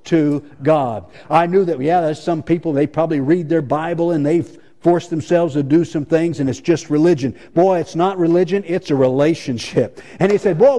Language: English